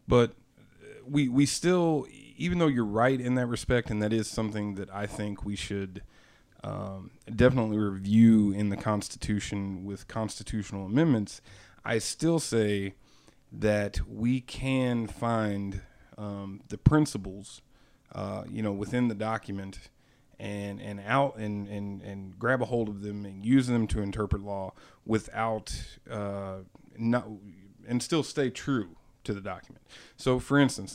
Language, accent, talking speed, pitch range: English, American, 145 wpm, 100-130 Hz